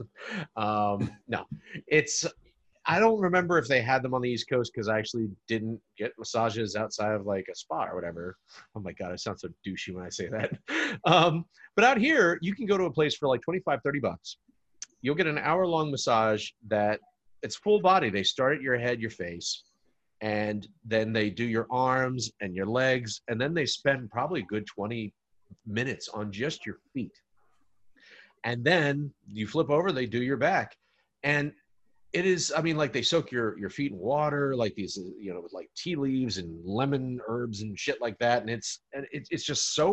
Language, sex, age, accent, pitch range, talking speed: English, male, 30-49, American, 105-145 Hz, 200 wpm